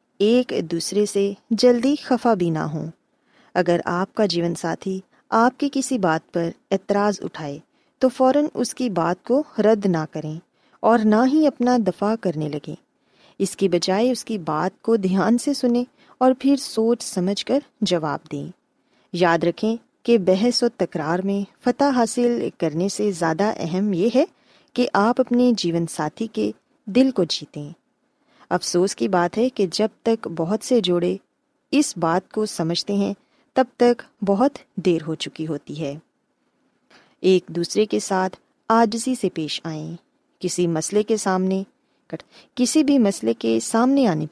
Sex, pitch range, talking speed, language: female, 175-245 Hz, 160 wpm, Urdu